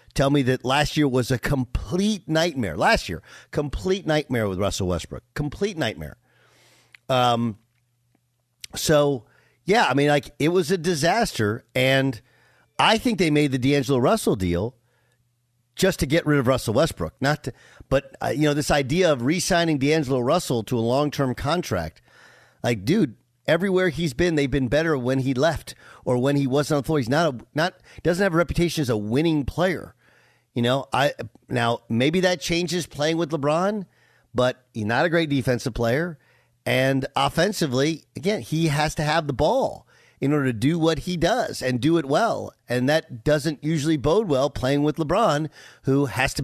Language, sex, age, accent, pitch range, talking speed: English, male, 50-69, American, 125-165 Hz, 180 wpm